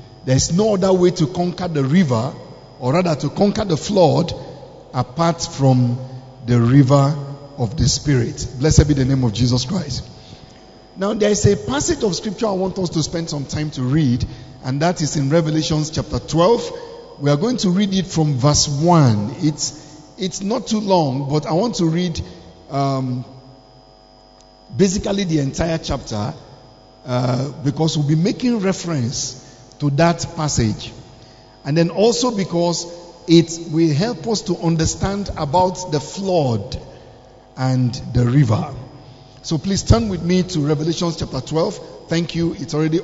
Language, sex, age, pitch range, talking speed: English, male, 50-69, 130-175 Hz, 160 wpm